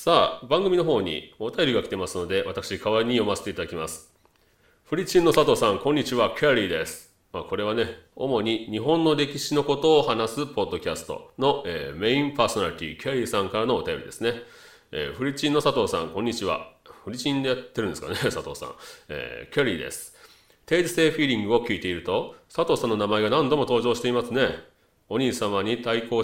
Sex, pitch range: male, 110-170 Hz